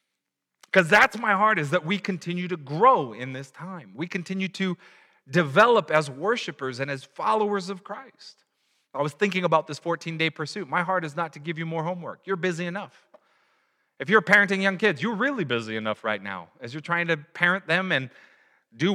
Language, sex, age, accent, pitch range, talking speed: English, male, 30-49, American, 145-200 Hz, 195 wpm